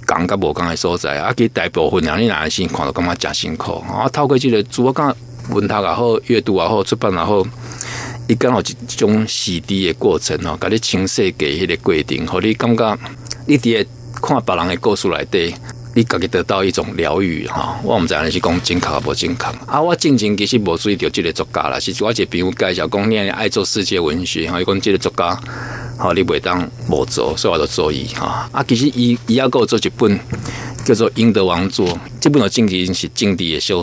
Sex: male